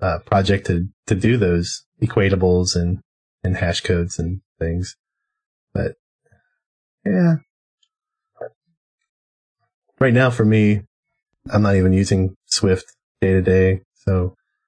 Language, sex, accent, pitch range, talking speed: English, male, American, 95-125 Hz, 115 wpm